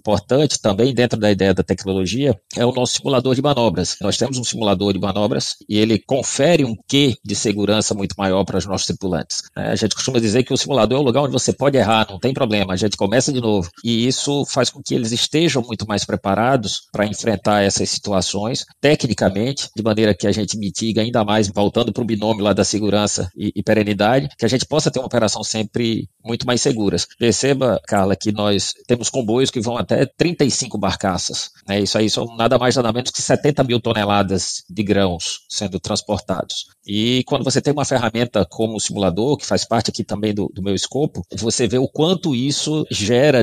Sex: male